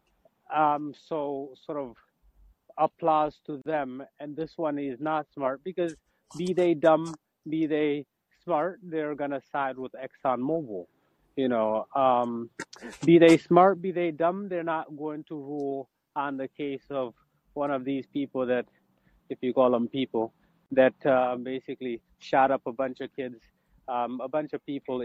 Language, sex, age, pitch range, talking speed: English, male, 30-49, 130-160 Hz, 165 wpm